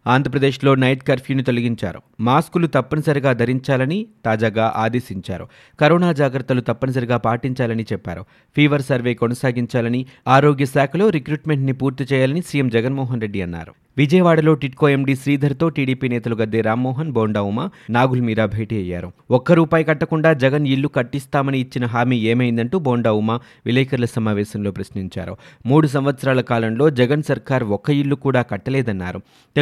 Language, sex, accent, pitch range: Telugu, male, native, 120-145 Hz